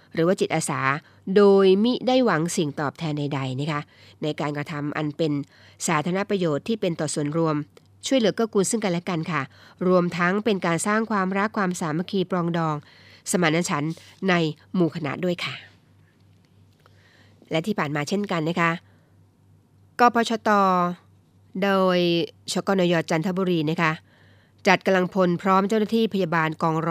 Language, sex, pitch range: Thai, female, 150-185 Hz